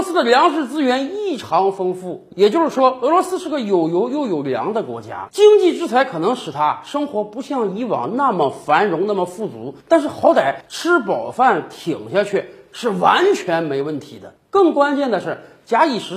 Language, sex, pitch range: Chinese, male, 175-280 Hz